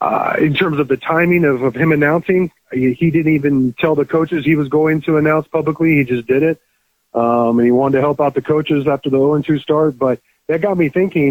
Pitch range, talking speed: 135-160 Hz, 240 wpm